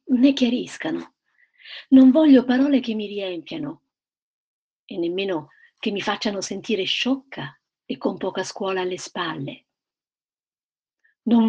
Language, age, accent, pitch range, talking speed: Italian, 50-69, native, 195-275 Hz, 115 wpm